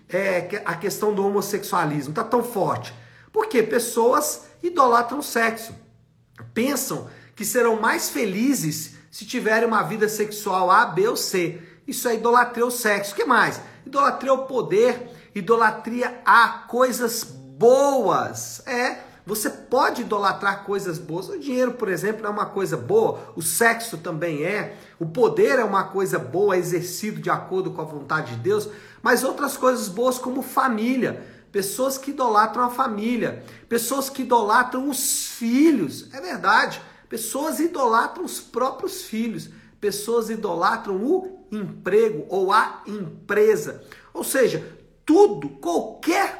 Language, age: Portuguese, 50-69